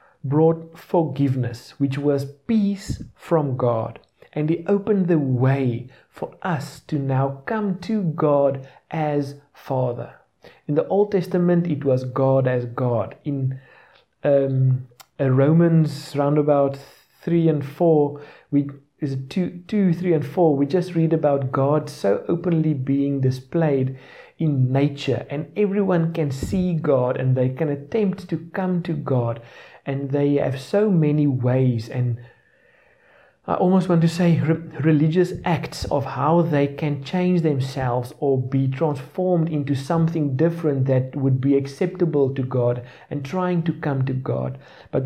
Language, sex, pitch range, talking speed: English, male, 130-165 Hz, 145 wpm